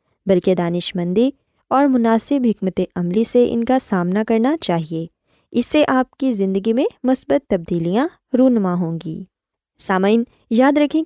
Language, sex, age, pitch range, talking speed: Urdu, female, 20-39, 190-260 Hz, 140 wpm